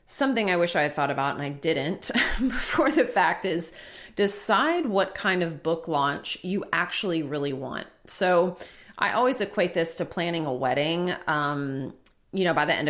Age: 30-49